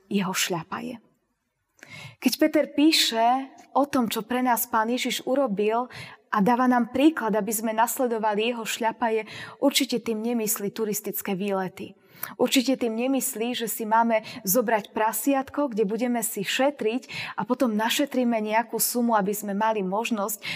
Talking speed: 140 wpm